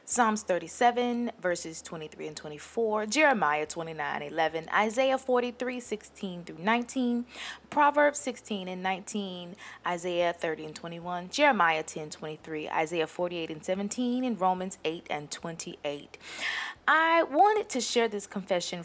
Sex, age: female, 20-39